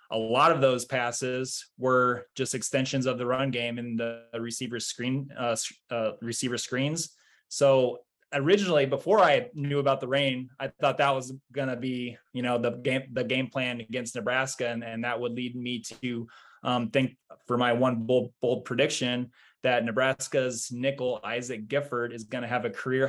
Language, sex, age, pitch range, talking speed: English, male, 20-39, 120-135 Hz, 180 wpm